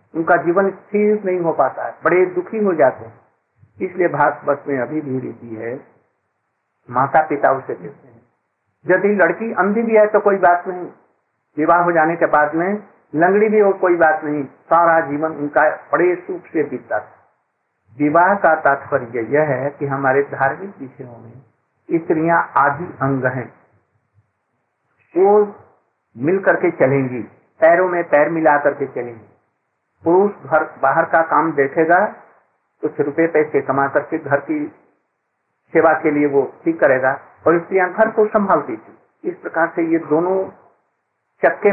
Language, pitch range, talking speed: Hindi, 140-190 Hz, 155 wpm